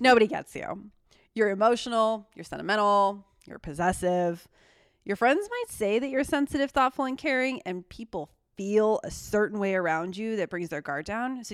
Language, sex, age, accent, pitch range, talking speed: English, female, 20-39, American, 165-220 Hz, 170 wpm